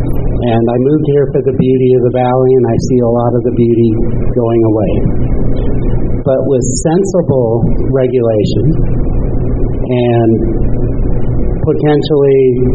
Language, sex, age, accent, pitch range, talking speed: English, male, 50-69, American, 120-145 Hz, 120 wpm